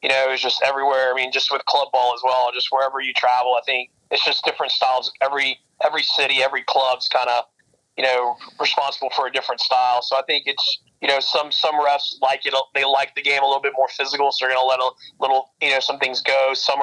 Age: 30-49